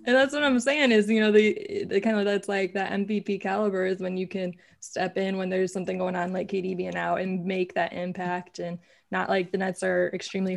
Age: 20-39